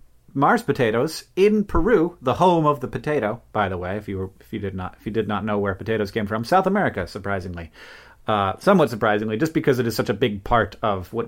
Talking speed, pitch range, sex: 235 wpm, 110-150 Hz, male